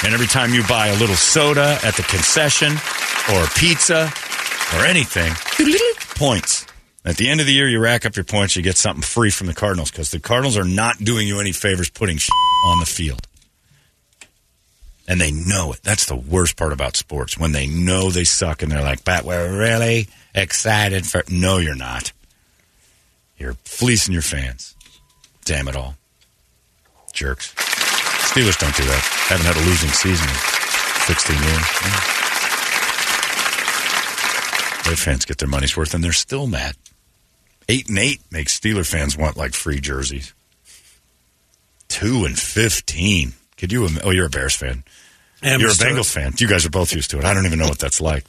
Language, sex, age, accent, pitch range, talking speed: English, male, 40-59, American, 75-110 Hz, 180 wpm